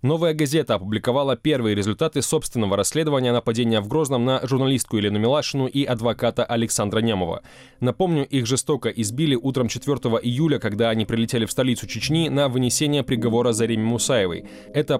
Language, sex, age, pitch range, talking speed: Russian, male, 20-39, 115-140 Hz, 150 wpm